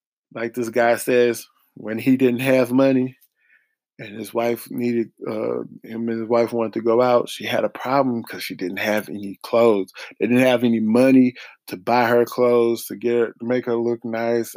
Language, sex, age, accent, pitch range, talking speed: English, male, 20-39, American, 115-140 Hz, 200 wpm